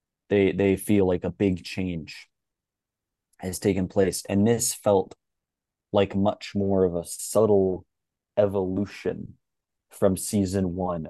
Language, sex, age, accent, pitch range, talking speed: English, male, 20-39, American, 90-100 Hz, 125 wpm